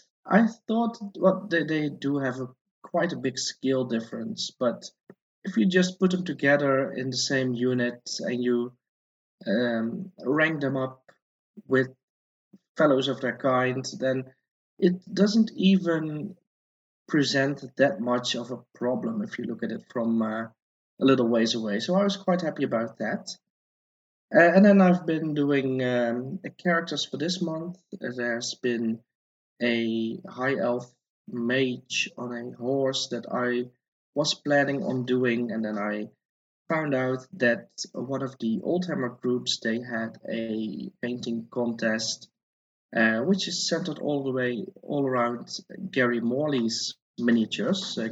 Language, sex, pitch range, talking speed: English, male, 120-160 Hz, 150 wpm